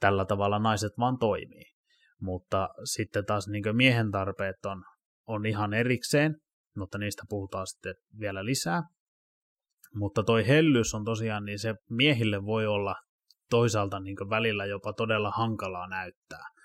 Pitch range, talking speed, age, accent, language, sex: 100-115 Hz, 135 wpm, 20-39, native, Finnish, male